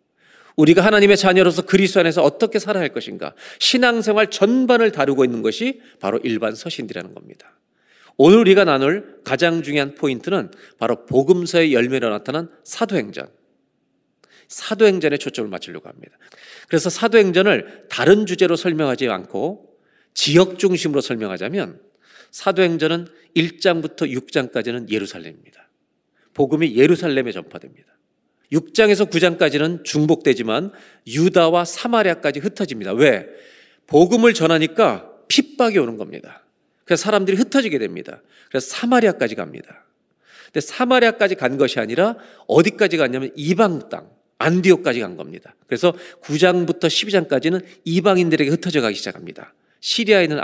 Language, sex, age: Korean, male, 40-59